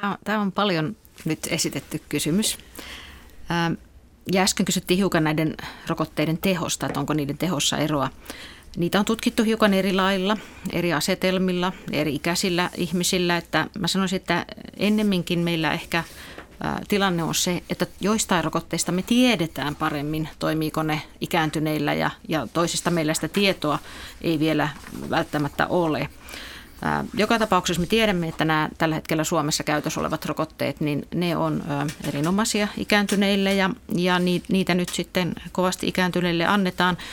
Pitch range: 155-190 Hz